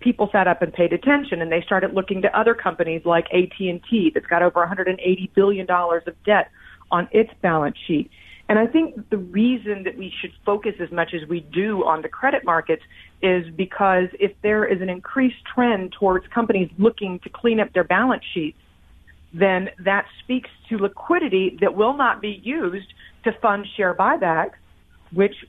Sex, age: female, 40-59